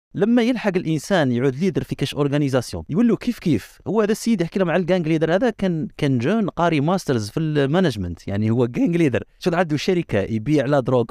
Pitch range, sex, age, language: 120-160 Hz, male, 30-49, Arabic